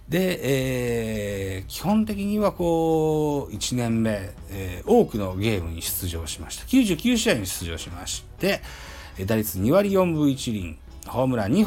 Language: Japanese